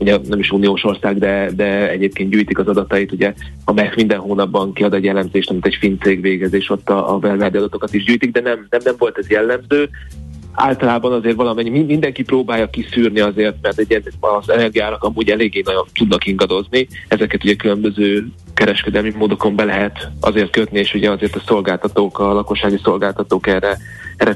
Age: 30-49